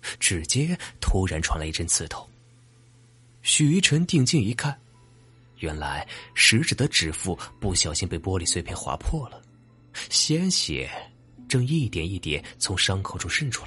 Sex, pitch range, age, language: male, 90-125 Hz, 30-49, Chinese